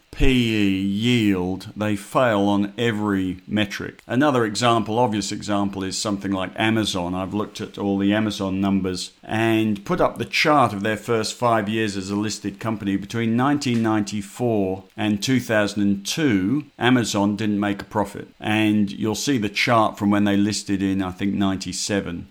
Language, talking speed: English, 155 wpm